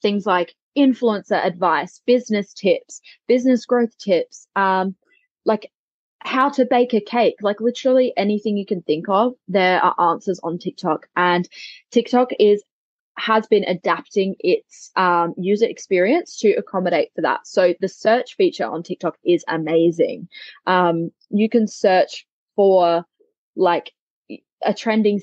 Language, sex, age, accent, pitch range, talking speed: English, female, 20-39, Australian, 180-235 Hz, 140 wpm